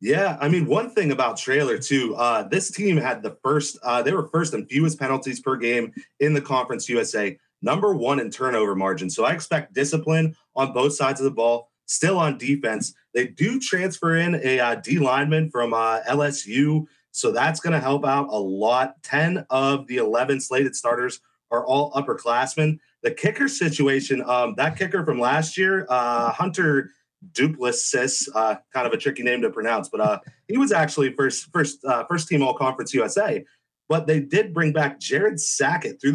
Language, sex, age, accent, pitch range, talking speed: English, male, 30-49, American, 135-160 Hz, 195 wpm